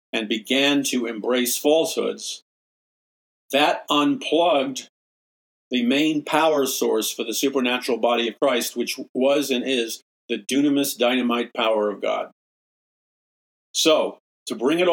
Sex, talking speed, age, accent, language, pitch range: male, 125 wpm, 50-69, American, English, 120-150 Hz